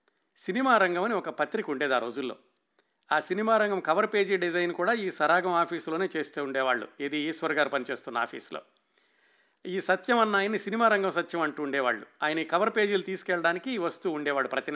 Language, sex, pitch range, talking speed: Telugu, male, 145-185 Hz, 165 wpm